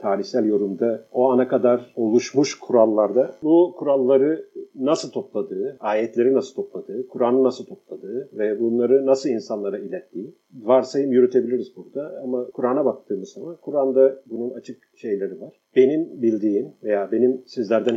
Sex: male